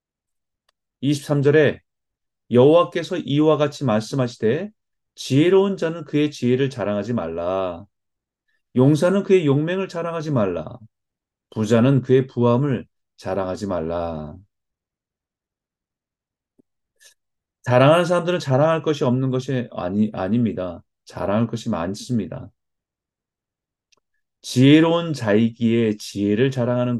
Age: 30-49